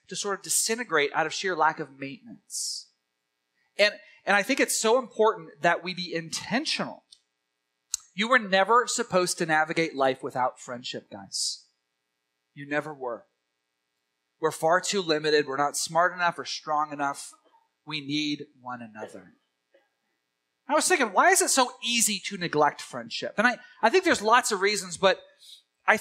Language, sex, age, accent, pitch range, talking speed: English, male, 30-49, American, 130-200 Hz, 160 wpm